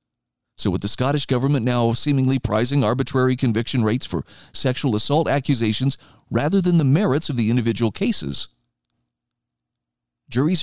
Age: 40-59